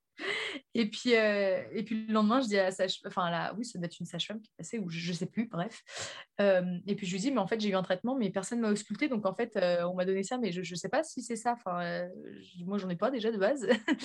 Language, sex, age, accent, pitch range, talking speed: French, female, 20-39, French, 190-230 Hz, 315 wpm